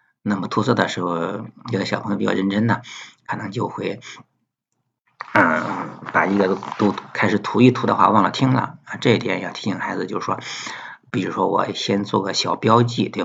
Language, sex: Chinese, male